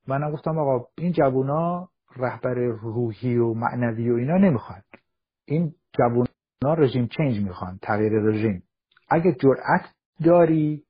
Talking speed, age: 125 wpm, 50-69